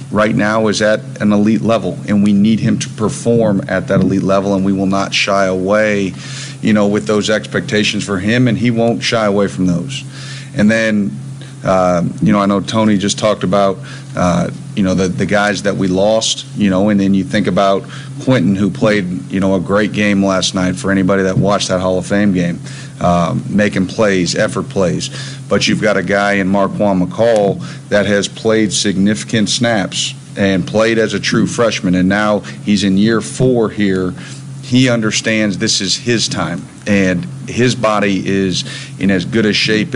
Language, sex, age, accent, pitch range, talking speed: English, male, 40-59, American, 95-120 Hz, 195 wpm